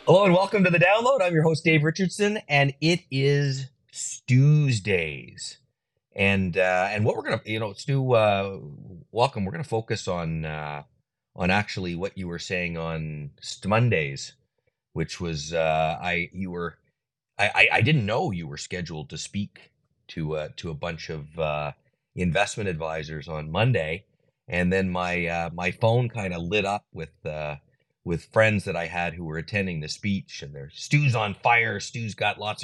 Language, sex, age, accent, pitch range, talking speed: English, male, 30-49, American, 80-120 Hz, 175 wpm